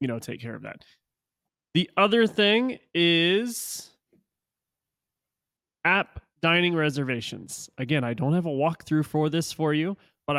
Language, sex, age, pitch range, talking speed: English, male, 30-49, 135-165 Hz, 140 wpm